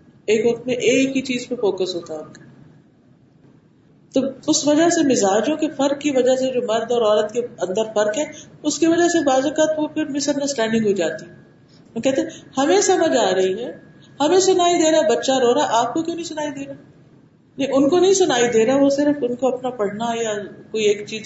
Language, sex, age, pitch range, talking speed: Urdu, female, 50-69, 195-275 Hz, 210 wpm